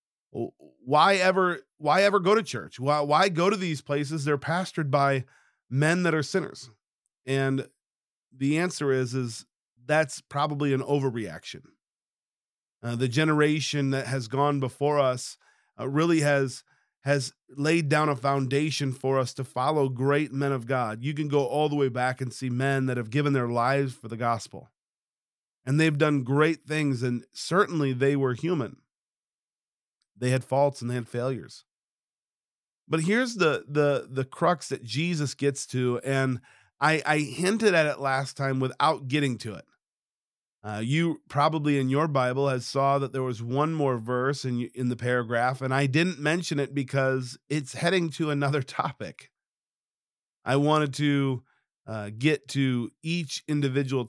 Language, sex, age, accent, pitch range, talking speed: English, male, 40-59, American, 125-150 Hz, 165 wpm